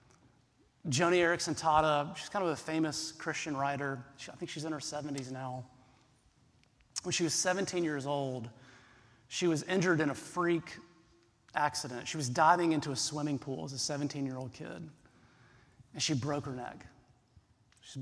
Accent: American